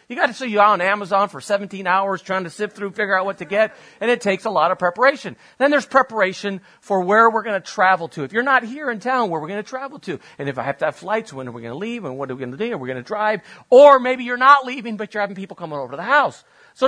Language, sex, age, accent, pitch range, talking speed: English, male, 40-59, American, 180-240 Hz, 315 wpm